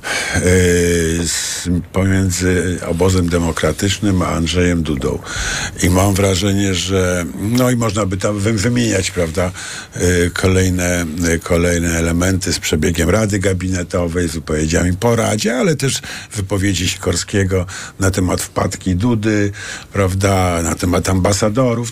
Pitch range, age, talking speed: 90-125 Hz, 50-69, 110 wpm